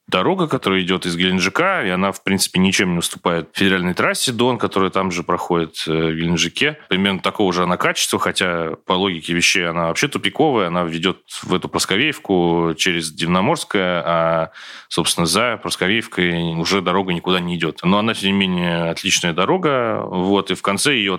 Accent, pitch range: native, 85-95 Hz